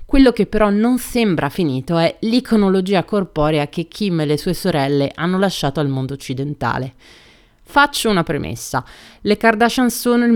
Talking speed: 155 wpm